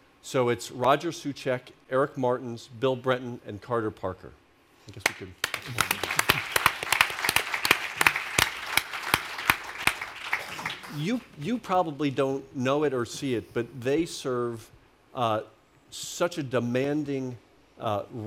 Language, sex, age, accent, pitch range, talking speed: English, male, 50-69, American, 110-130 Hz, 105 wpm